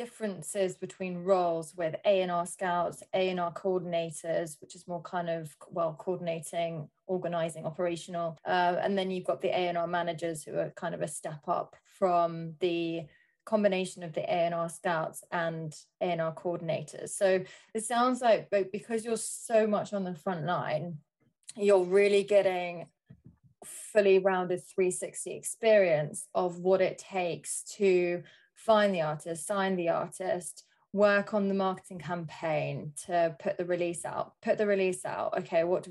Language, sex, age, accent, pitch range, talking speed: English, female, 20-39, British, 170-200 Hz, 150 wpm